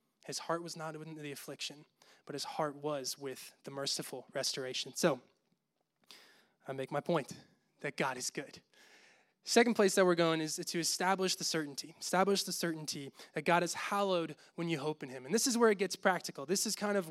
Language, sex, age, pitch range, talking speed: English, male, 20-39, 155-190 Hz, 200 wpm